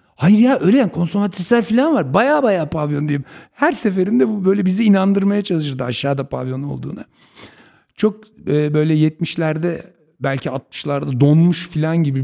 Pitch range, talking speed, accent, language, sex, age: 120-165 Hz, 145 wpm, native, Turkish, male, 60-79